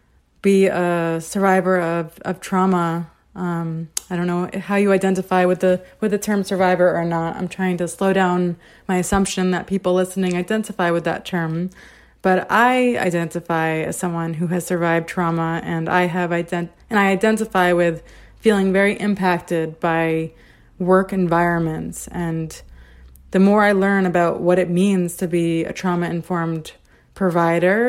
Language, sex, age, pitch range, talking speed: English, female, 20-39, 170-195 Hz, 155 wpm